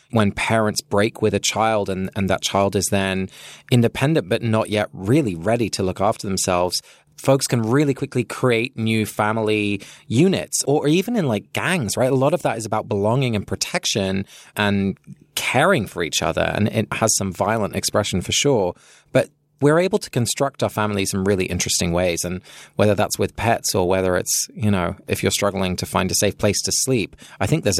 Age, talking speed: 20-39, 200 wpm